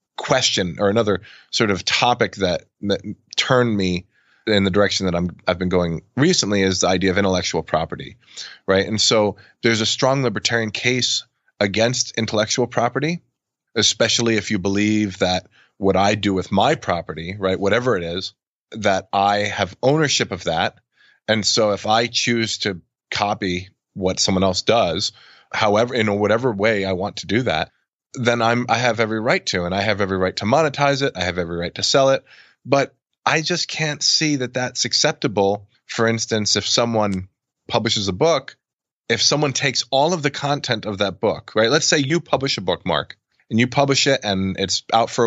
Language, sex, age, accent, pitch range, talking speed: English, male, 20-39, American, 100-125 Hz, 185 wpm